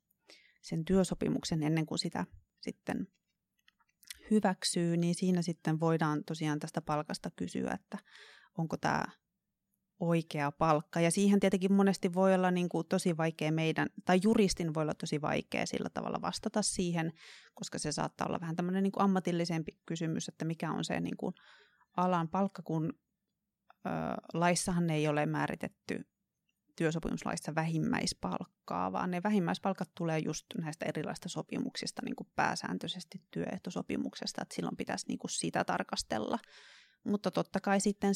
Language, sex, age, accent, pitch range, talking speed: Finnish, female, 30-49, native, 160-195 Hz, 125 wpm